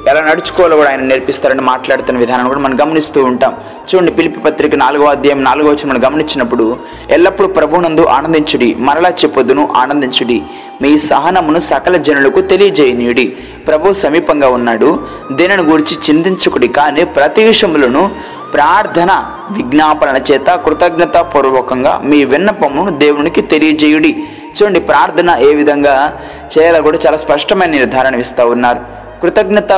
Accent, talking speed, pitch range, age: native, 115 wpm, 130-175 Hz, 20-39